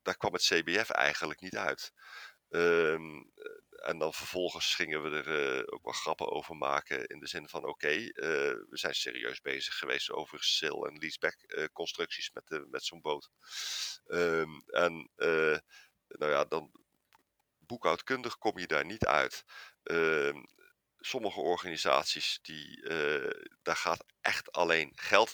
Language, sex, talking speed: Dutch, male, 135 wpm